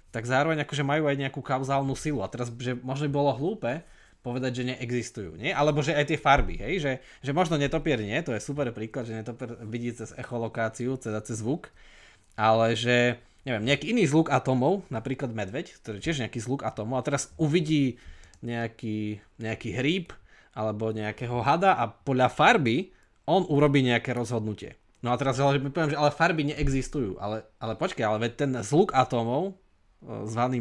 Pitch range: 115-145 Hz